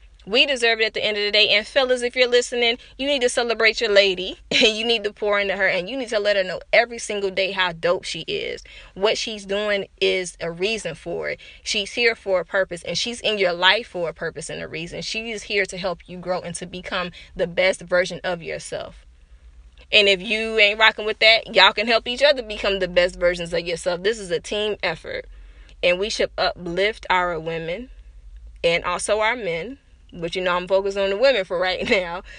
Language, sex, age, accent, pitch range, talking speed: English, female, 20-39, American, 175-215 Hz, 230 wpm